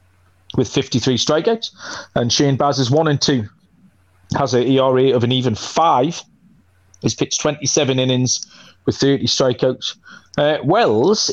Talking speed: 140 wpm